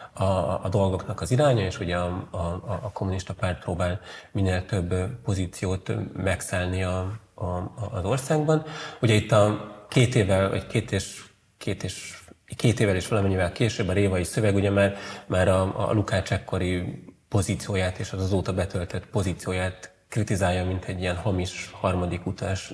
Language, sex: Hungarian, male